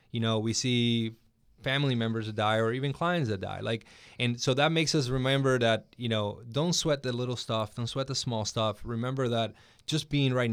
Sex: male